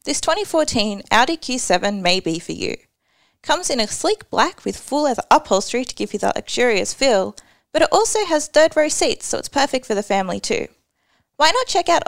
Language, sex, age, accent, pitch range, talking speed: English, female, 20-39, Australian, 225-320 Hz, 205 wpm